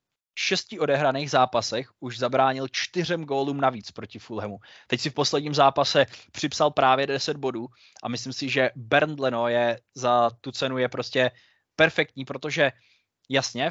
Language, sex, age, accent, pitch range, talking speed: Czech, male, 20-39, native, 130-155 Hz, 155 wpm